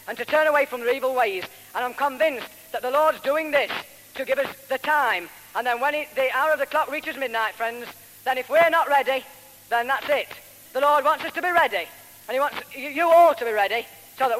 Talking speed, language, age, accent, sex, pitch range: 240 wpm, English, 40-59, British, female, 250-315 Hz